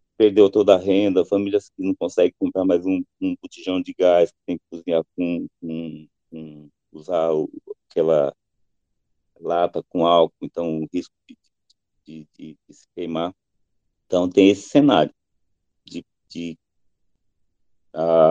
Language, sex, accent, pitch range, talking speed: Portuguese, male, Brazilian, 90-135 Hz, 140 wpm